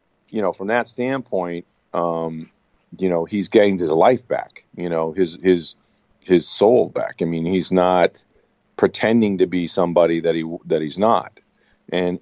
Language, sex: English, male